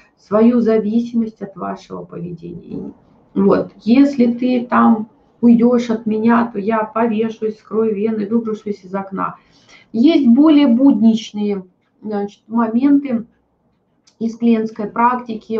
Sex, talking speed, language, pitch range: female, 110 wpm, Russian, 205-240 Hz